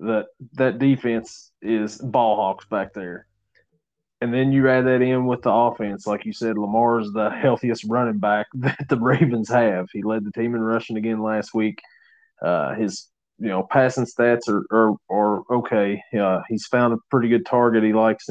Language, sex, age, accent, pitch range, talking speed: English, male, 20-39, American, 110-140 Hz, 185 wpm